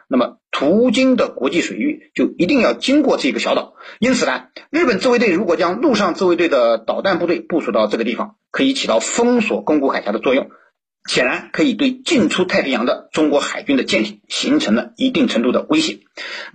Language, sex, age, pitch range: Chinese, male, 50-69, 215-290 Hz